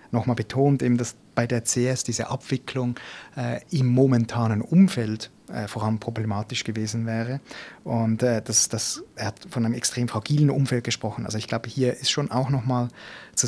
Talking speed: 185 wpm